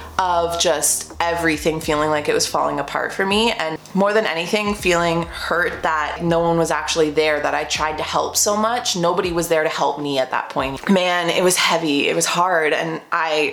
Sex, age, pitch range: female, 20-39, 150-190 Hz